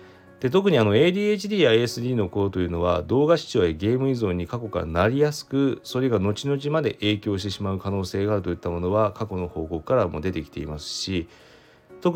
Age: 40-59